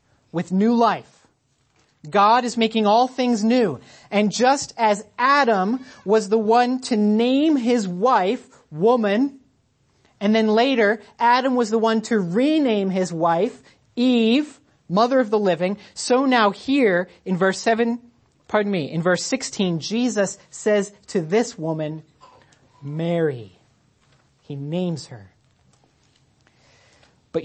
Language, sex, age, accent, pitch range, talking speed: English, male, 30-49, American, 155-220 Hz, 125 wpm